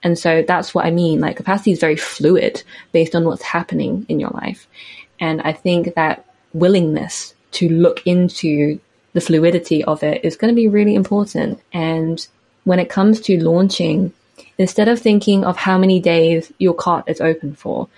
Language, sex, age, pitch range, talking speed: English, female, 20-39, 165-195 Hz, 180 wpm